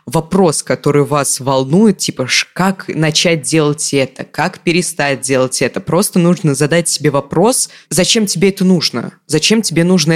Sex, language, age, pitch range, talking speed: female, Russian, 20-39, 140-175 Hz, 150 wpm